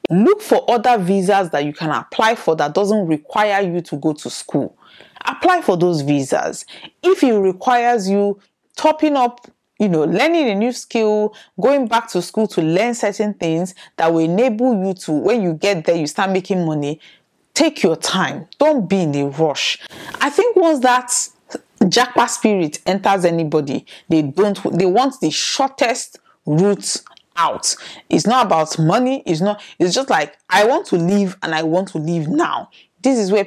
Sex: female